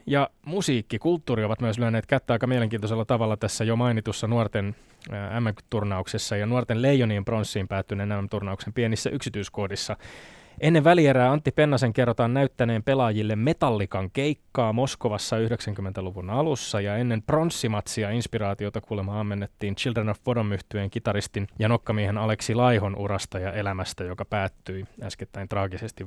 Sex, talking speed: male, 135 wpm